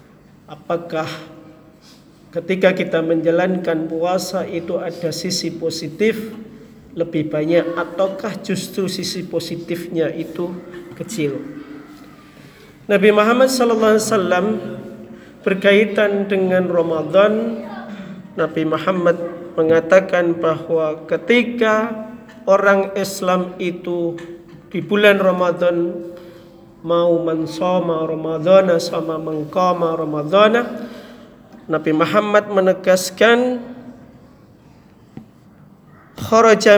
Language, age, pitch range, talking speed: Indonesian, 50-69, 170-210 Hz, 70 wpm